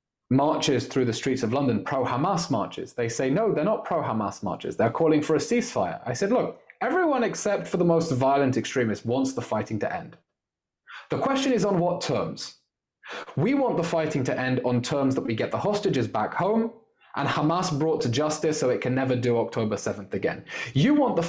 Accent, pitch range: British, 125-175 Hz